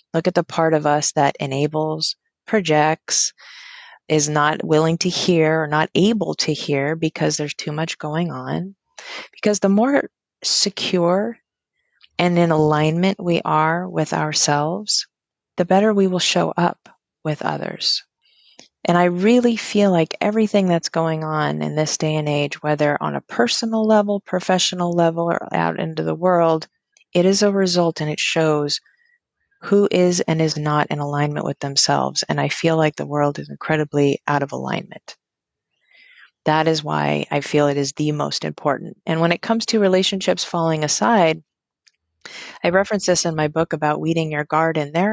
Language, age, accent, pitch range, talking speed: English, 30-49, American, 150-185 Hz, 170 wpm